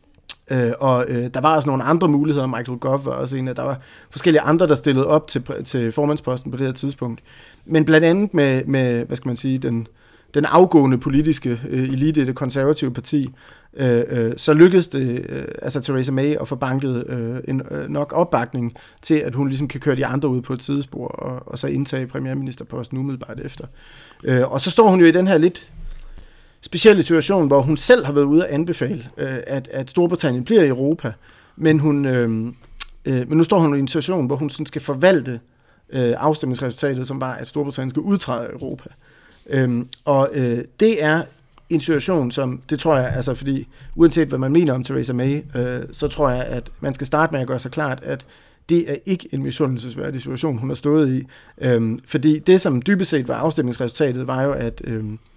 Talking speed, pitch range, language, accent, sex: 200 wpm, 125-155 Hz, Danish, native, male